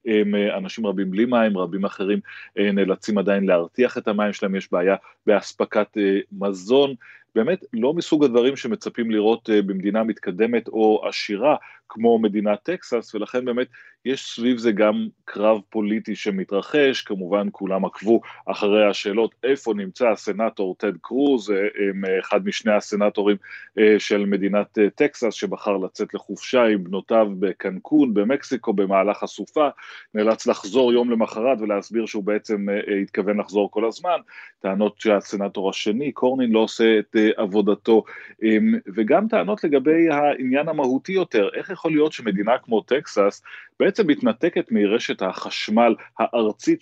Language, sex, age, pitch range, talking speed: Hebrew, male, 30-49, 105-120 Hz, 130 wpm